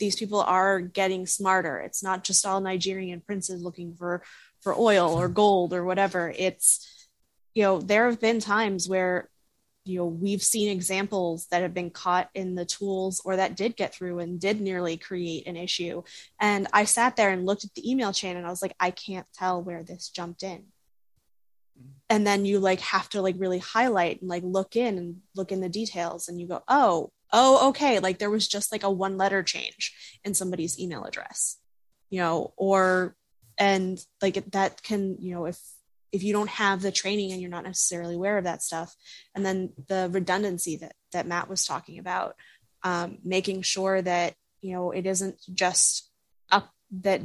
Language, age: English, 20-39